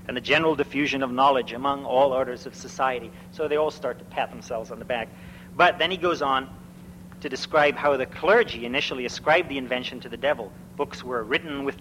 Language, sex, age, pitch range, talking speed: English, male, 40-59, 125-150 Hz, 215 wpm